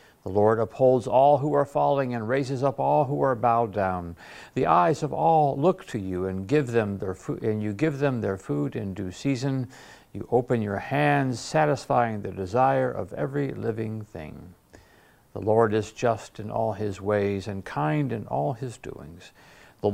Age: 60-79